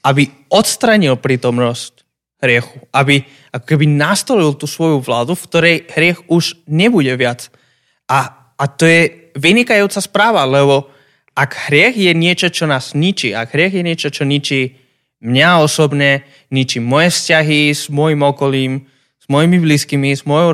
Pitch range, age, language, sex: 135-165 Hz, 20-39, Slovak, male